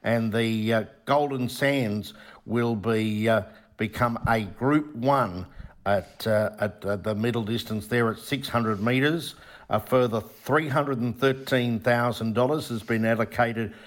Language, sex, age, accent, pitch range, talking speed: English, male, 60-79, Australian, 110-130 Hz, 150 wpm